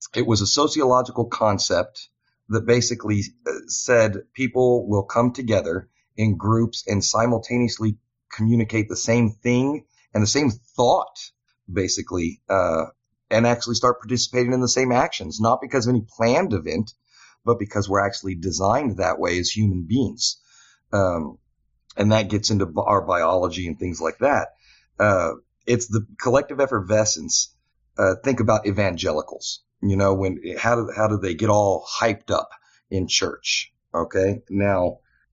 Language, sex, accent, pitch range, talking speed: English, male, American, 95-120 Hz, 145 wpm